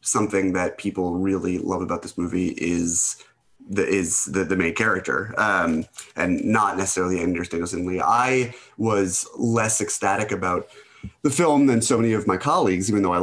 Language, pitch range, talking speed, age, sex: English, 90-105 Hz, 170 wpm, 30-49, male